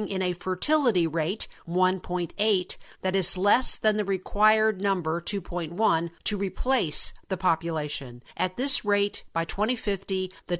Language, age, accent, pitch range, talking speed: English, 50-69, American, 180-215 Hz, 130 wpm